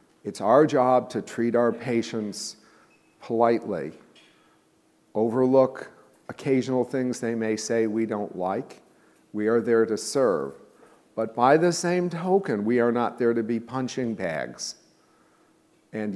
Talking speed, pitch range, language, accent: 135 wpm, 110-135 Hz, English, American